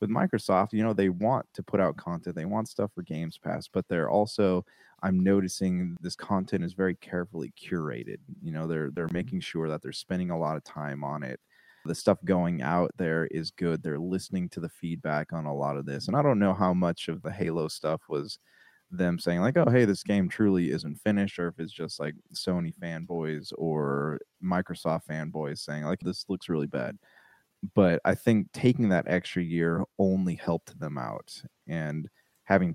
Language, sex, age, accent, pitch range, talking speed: English, male, 20-39, American, 80-100 Hz, 200 wpm